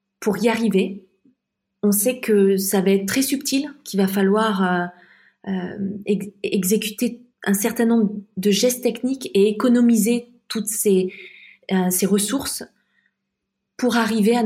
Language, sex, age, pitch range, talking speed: French, female, 20-39, 195-230 Hz, 135 wpm